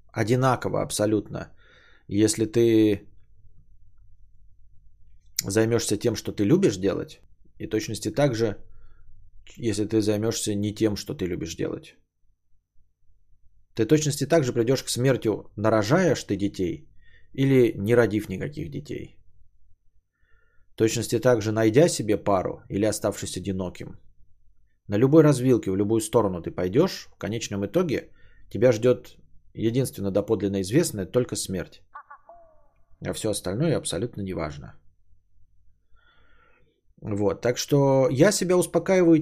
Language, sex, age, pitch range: Bulgarian, male, 20-39, 95-125 Hz